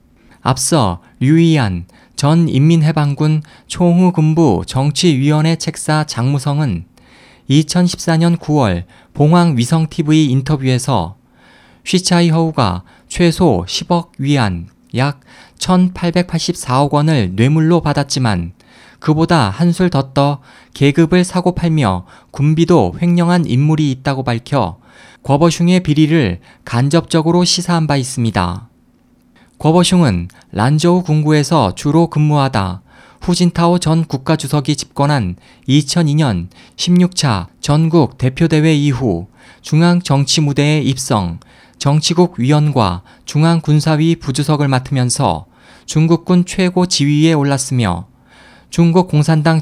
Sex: male